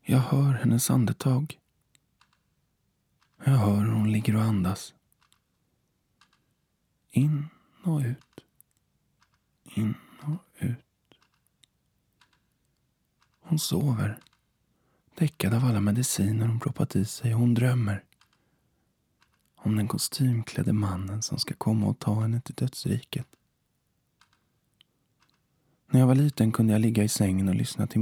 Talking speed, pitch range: 110 wpm, 105-140 Hz